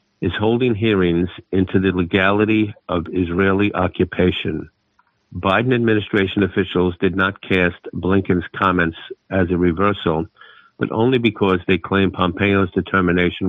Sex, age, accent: male, 50-69, American